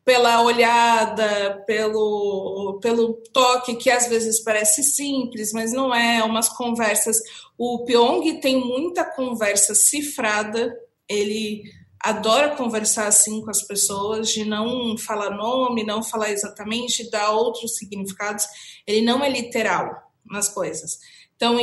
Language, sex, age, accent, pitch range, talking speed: Portuguese, female, 20-39, Brazilian, 215-260 Hz, 125 wpm